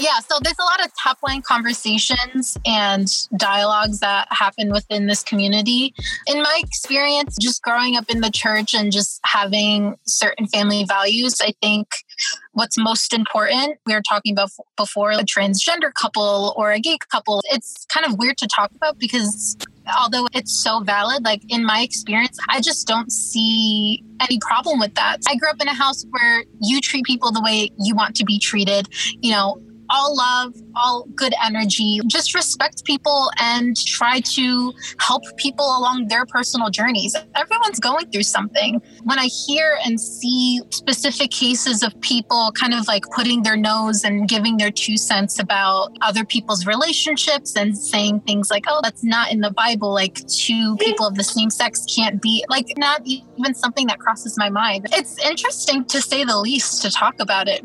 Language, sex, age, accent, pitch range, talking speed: English, female, 20-39, American, 210-265 Hz, 180 wpm